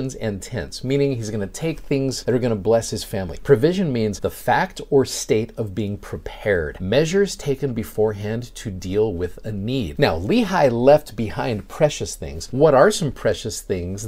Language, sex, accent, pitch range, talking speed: English, male, American, 95-130 Hz, 185 wpm